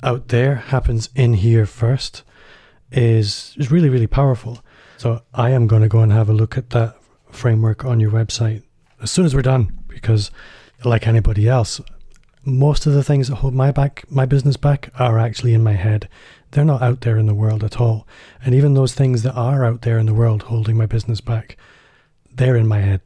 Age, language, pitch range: 30-49, English, 110-130 Hz